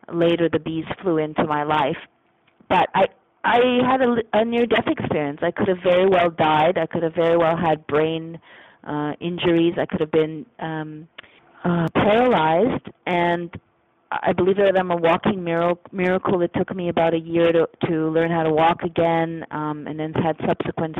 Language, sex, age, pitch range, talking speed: English, female, 30-49, 155-175 Hz, 180 wpm